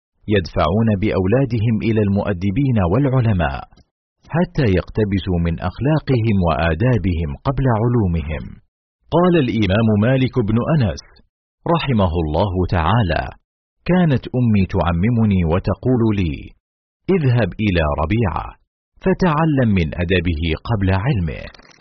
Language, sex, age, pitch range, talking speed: Arabic, male, 50-69, 90-125 Hz, 90 wpm